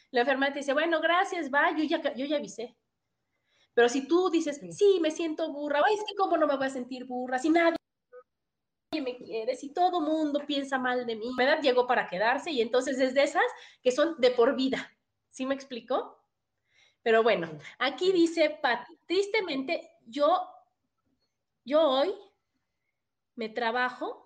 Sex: female